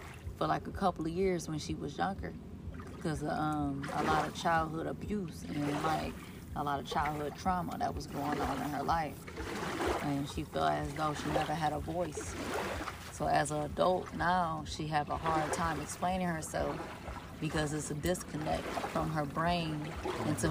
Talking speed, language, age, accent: 180 wpm, English, 20-39, American